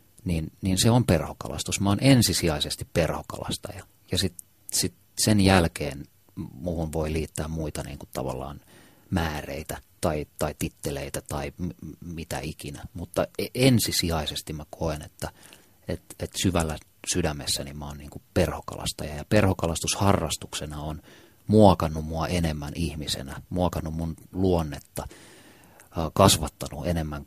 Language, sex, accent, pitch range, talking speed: Finnish, male, native, 80-100 Hz, 120 wpm